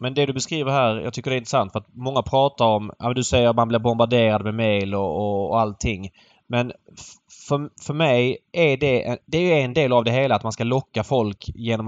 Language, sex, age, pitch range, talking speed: Swedish, male, 20-39, 115-145 Hz, 240 wpm